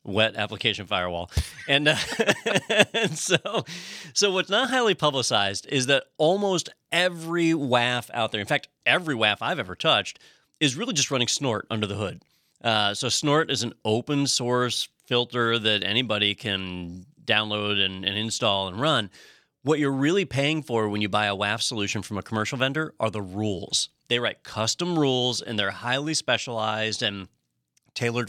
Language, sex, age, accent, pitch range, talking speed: English, male, 30-49, American, 105-130 Hz, 170 wpm